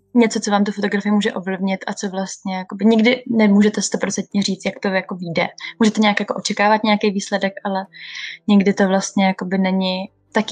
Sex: female